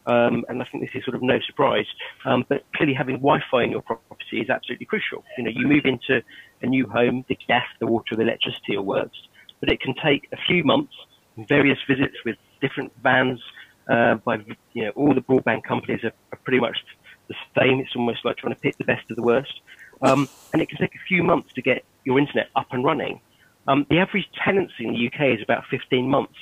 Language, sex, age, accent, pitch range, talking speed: English, male, 40-59, British, 115-135 Hz, 225 wpm